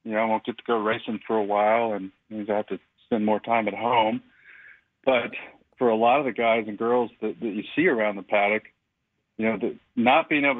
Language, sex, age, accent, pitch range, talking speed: English, male, 40-59, American, 105-115 Hz, 245 wpm